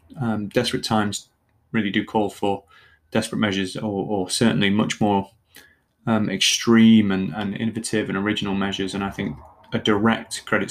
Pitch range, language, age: 105-120 Hz, English, 20-39